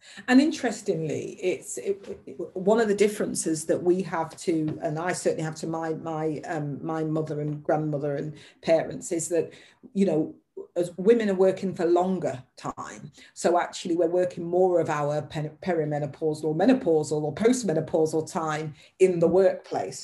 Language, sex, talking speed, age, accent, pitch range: English, female, 155 wpm, 40-59, British, 160-220 Hz